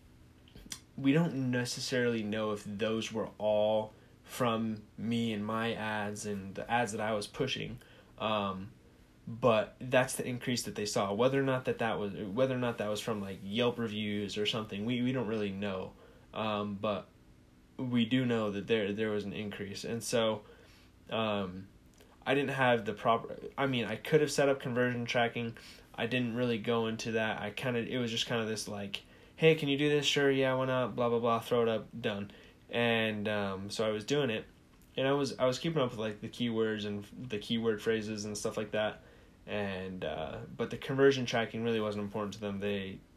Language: English